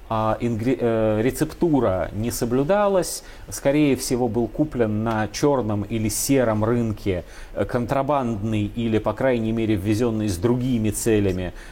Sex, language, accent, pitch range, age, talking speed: male, Russian, native, 105-140 Hz, 30-49, 115 wpm